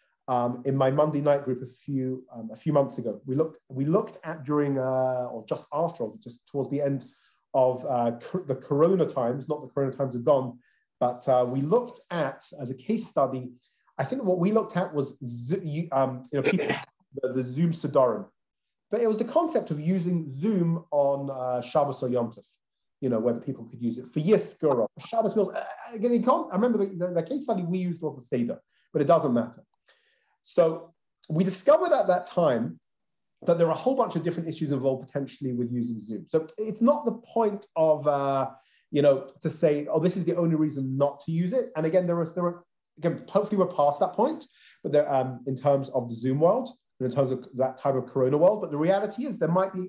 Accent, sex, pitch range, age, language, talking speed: British, male, 130-180 Hz, 30-49, English, 225 wpm